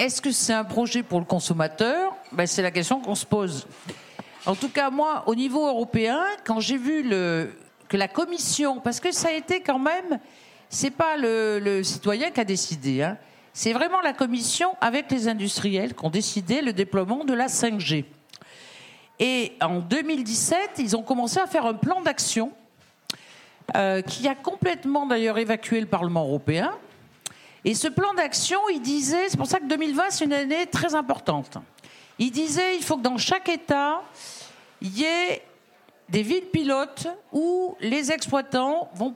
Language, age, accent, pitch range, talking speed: French, 50-69, French, 225-320 Hz, 175 wpm